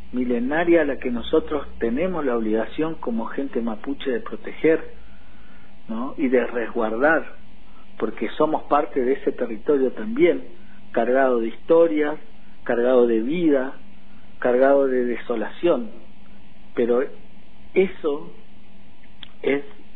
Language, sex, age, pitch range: Spanish, male, 50-69, 125-185 Hz